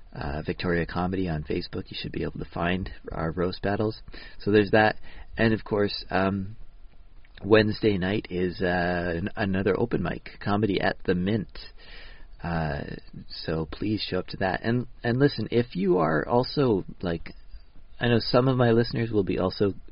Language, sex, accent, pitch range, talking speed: English, male, American, 90-110 Hz, 170 wpm